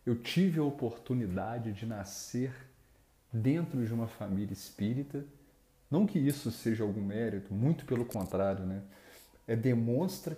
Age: 40-59